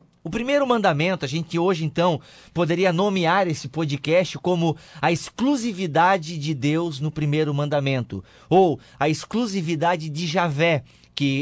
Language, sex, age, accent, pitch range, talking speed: Portuguese, male, 30-49, Brazilian, 145-180 Hz, 130 wpm